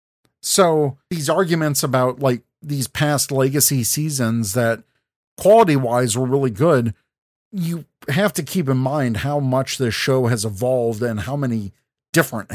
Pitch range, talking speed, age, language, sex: 120-165 Hz, 150 wpm, 50-69, English, male